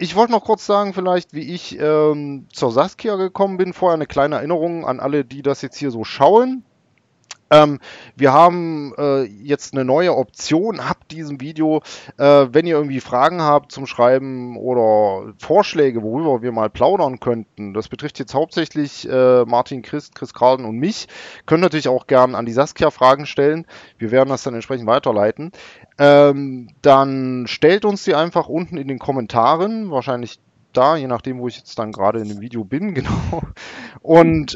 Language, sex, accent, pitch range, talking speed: German, male, German, 120-155 Hz, 175 wpm